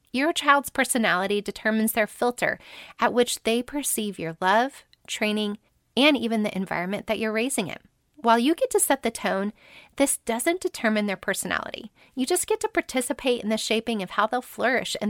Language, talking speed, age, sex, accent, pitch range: English, 185 wpm, 30-49, female, American, 205-285 Hz